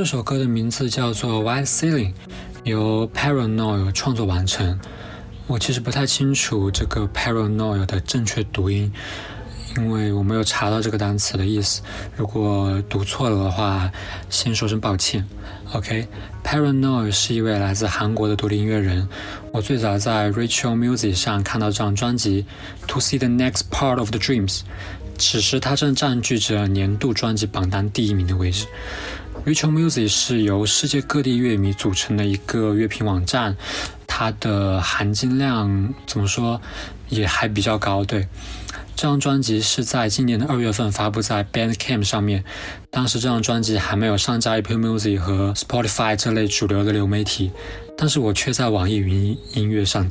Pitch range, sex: 100-120 Hz, male